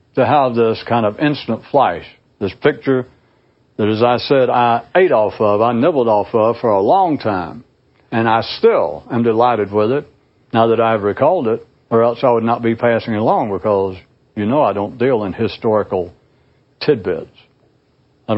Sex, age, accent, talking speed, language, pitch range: male, 60-79, American, 185 wpm, English, 110-135 Hz